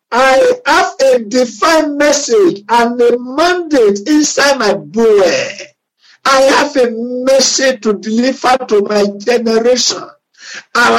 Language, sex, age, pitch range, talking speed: English, male, 50-69, 220-280 Hz, 115 wpm